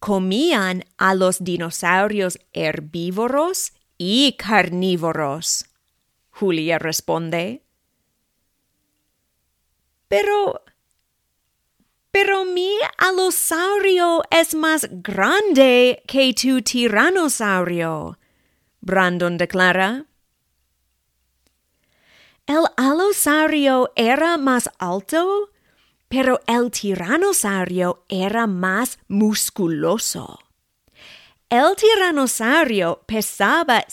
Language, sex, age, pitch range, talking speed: English, female, 30-49, 180-285 Hz, 60 wpm